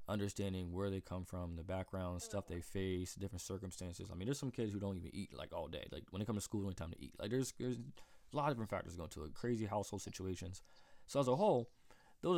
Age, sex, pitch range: 20-39, male, 85-105 Hz